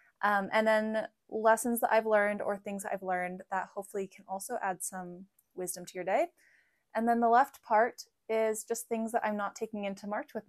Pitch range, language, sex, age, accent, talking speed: 190-235 Hz, English, female, 20-39, American, 205 wpm